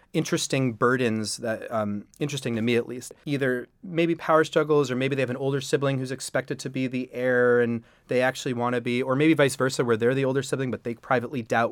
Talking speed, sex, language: 230 wpm, male, English